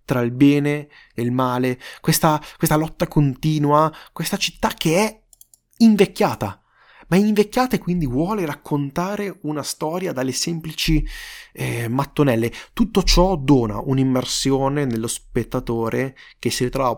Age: 20-39